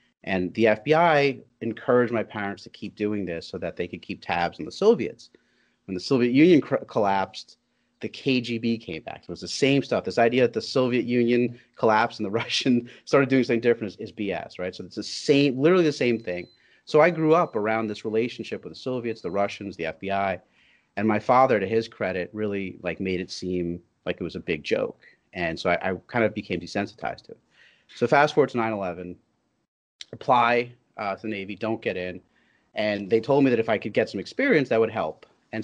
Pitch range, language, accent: 95-125 Hz, English, American